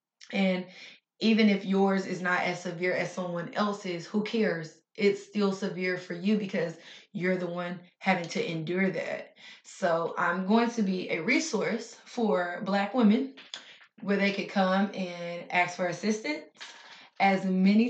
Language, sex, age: English, female, 20-39